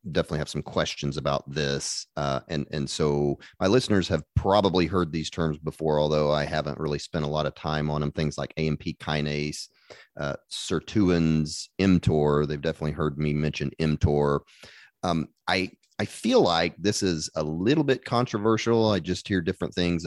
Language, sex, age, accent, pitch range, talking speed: English, male, 30-49, American, 75-90 Hz, 175 wpm